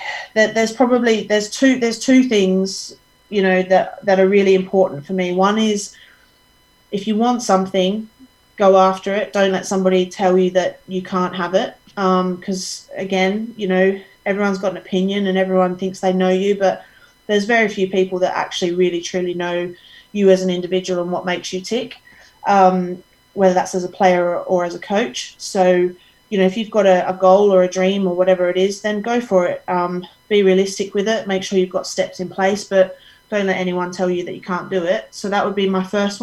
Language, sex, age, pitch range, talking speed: English, female, 30-49, 185-205 Hz, 215 wpm